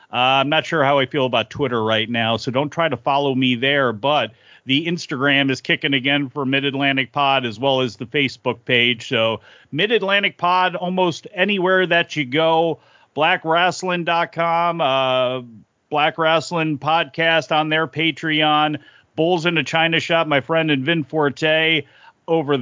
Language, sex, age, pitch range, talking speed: English, male, 40-59, 135-165 Hz, 160 wpm